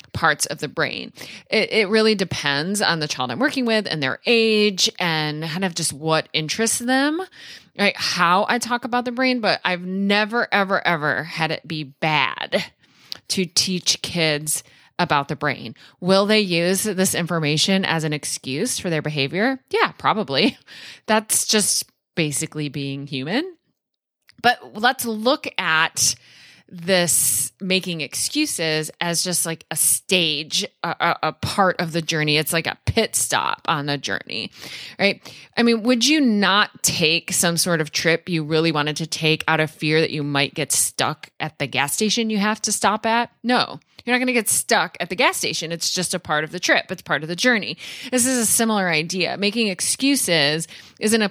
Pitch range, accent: 155-220 Hz, American